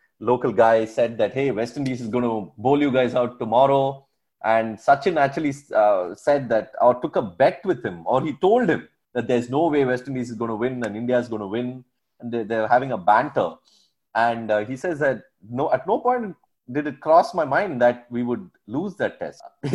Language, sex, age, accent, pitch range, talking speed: English, male, 30-49, Indian, 115-145 Hz, 220 wpm